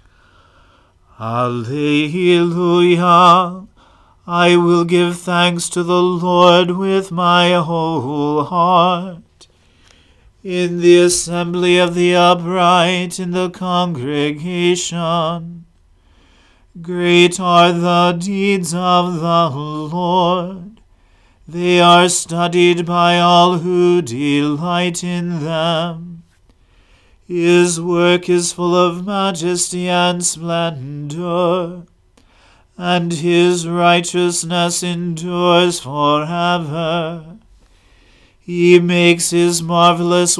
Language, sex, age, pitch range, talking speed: English, male, 40-59, 165-175 Hz, 80 wpm